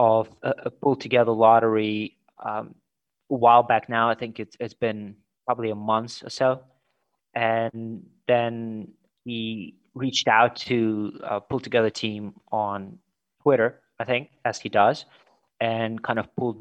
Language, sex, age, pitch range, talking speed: English, male, 20-39, 105-120 Hz, 150 wpm